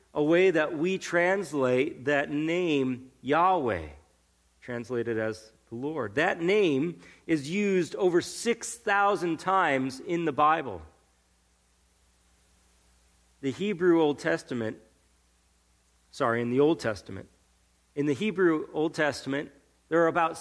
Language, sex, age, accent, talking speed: English, male, 40-59, American, 115 wpm